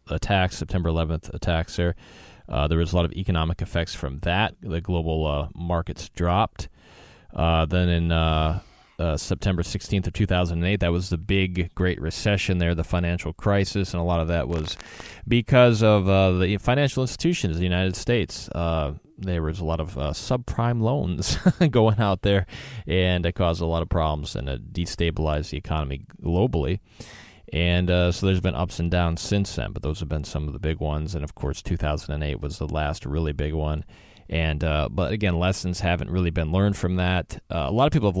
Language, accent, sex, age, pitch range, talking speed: English, American, male, 20-39, 80-95 Hz, 200 wpm